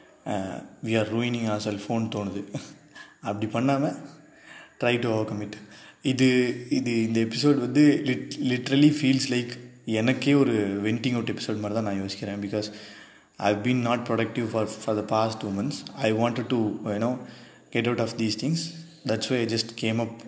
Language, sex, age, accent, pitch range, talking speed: Tamil, male, 20-39, native, 105-125 Hz, 170 wpm